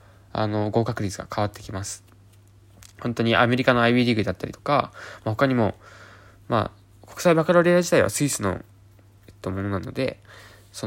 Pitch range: 100-120 Hz